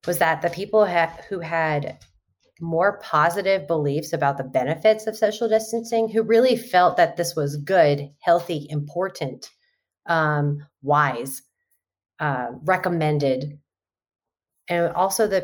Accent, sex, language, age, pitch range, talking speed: American, female, English, 30-49, 150-190 Hz, 125 wpm